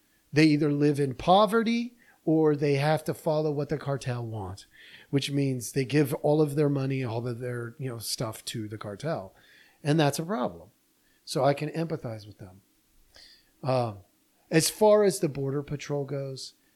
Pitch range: 125-160 Hz